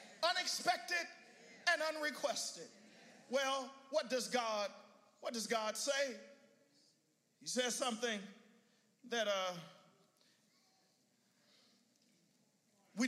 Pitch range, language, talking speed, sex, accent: 205-255 Hz, English, 80 wpm, male, American